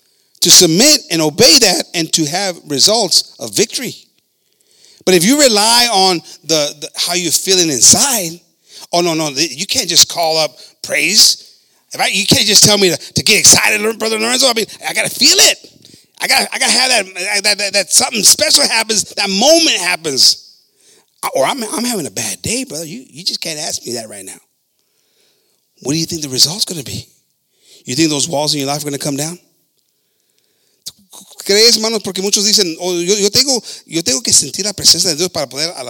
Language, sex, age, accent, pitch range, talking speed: English, male, 30-49, American, 155-205 Hz, 210 wpm